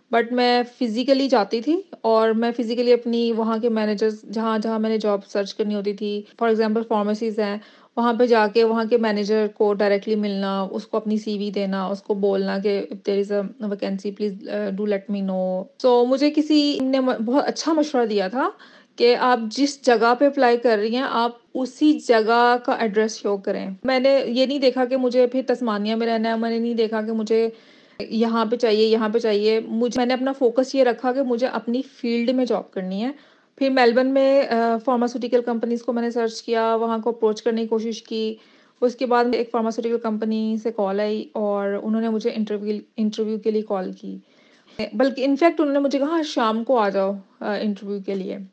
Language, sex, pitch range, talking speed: Urdu, female, 215-250 Hz, 200 wpm